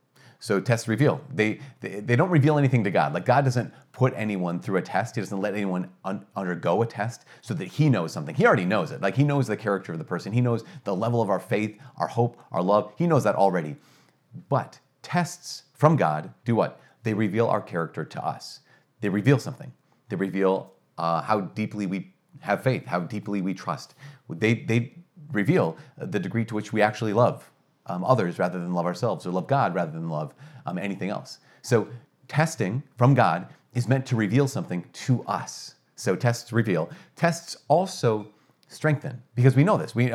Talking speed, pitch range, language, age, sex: 195 wpm, 100-140 Hz, English, 40-59, male